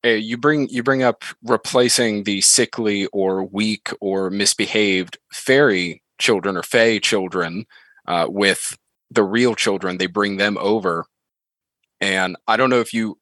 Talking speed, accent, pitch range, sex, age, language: 150 wpm, American, 95-110 Hz, male, 30-49, English